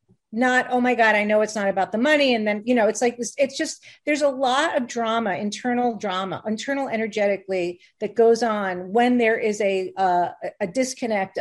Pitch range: 200-270 Hz